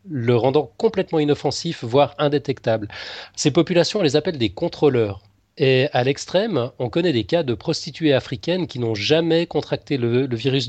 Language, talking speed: French, 170 wpm